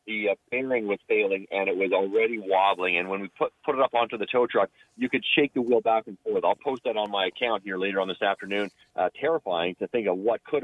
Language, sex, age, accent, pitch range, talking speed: English, male, 40-59, American, 110-155 Hz, 265 wpm